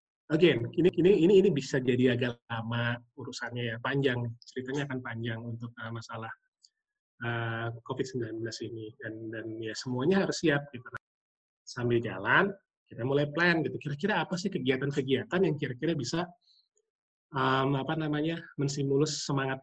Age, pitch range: 20-39, 125-155 Hz